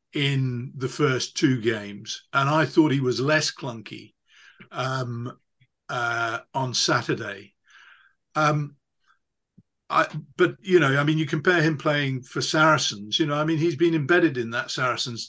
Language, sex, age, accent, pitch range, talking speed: English, male, 50-69, British, 125-155 Hz, 155 wpm